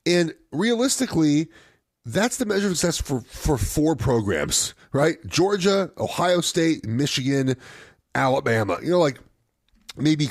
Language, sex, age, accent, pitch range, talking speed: English, male, 30-49, American, 110-160 Hz, 115 wpm